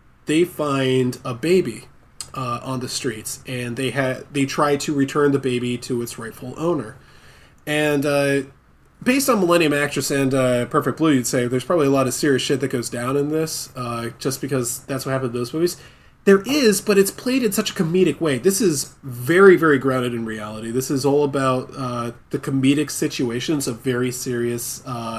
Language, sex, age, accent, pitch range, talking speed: English, male, 20-39, American, 130-165 Hz, 195 wpm